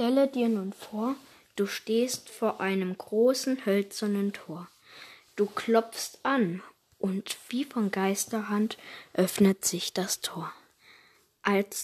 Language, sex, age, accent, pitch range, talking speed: German, female, 20-39, German, 195-255 Hz, 115 wpm